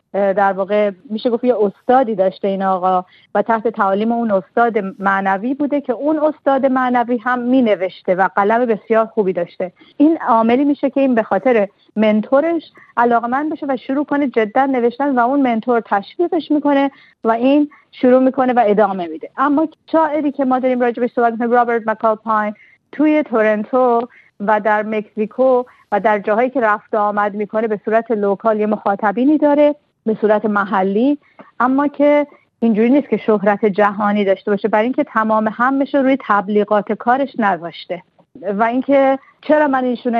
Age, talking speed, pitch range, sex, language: 40-59, 160 wpm, 205-255 Hz, female, Persian